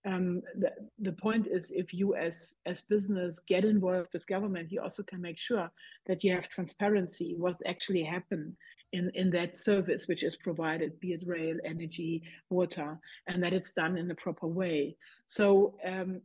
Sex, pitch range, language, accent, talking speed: female, 175-200 Hz, English, German, 175 wpm